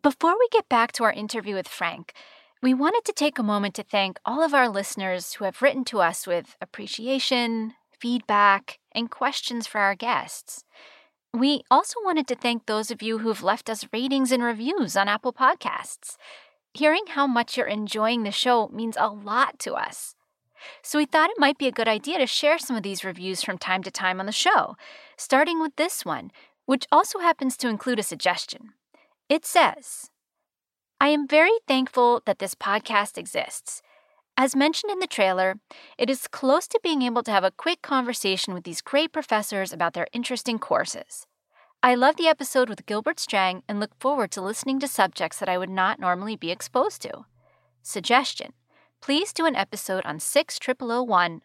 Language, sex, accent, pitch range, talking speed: English, female, American, 200-285 Hz, 185 wpm